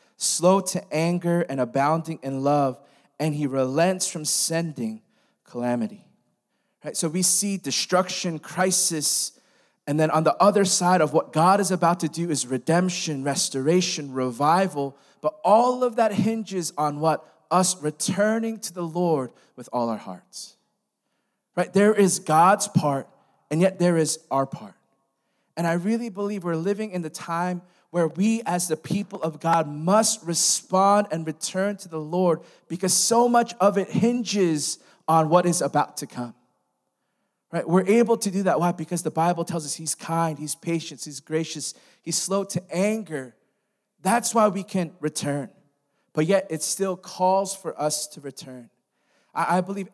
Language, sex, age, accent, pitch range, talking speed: English, male, 20-39, American, 150-190 Hz, 165 wpm